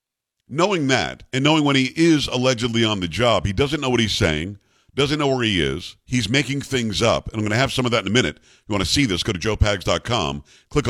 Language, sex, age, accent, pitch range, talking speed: English, male, 50-69, American, 105-140 Hz, 260 wpm